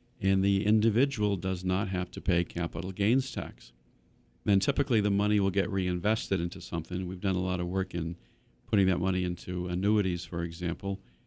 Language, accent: English, American